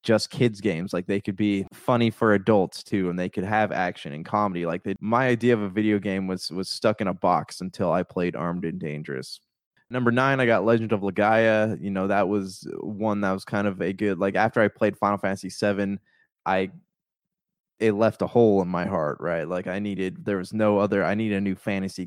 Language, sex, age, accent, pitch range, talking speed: English, male, 20-39, American, 90-105 Hz, 225 wpm